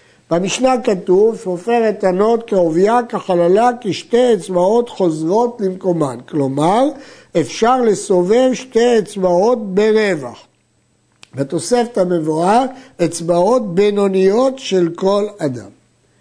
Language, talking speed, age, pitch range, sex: Hebrew, 90 wpm, 60-79, 170-230 Hz, male